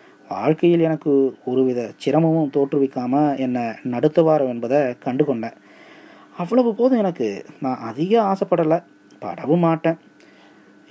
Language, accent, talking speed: Tamil, native, 100 wpm